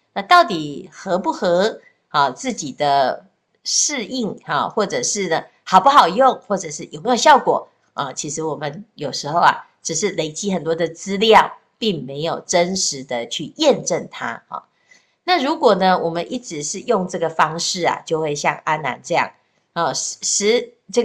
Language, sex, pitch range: Chinese, female, 160-220 Hz